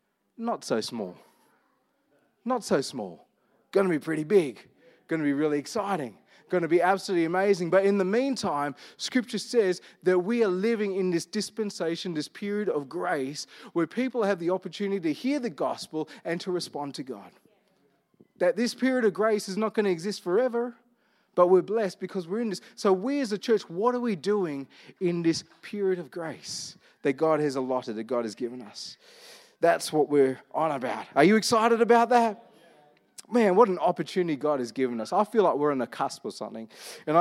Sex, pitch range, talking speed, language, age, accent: male, 150-210 Hz, 195 wpm, English, 30-49, Australian